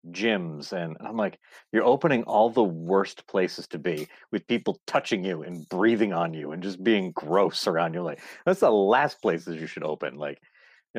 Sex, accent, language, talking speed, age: male, American, English, 195 wpm, 40-59